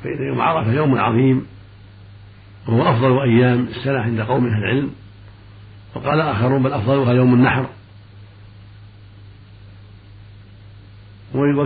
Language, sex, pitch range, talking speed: Arabic, male, 105-130 Hz, 105 wpm